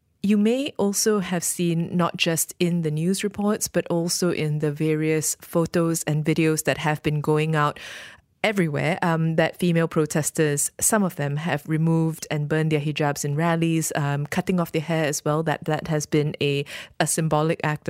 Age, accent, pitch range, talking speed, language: 20-39, Malaysian, 150-170 Hz, 185 wpm, English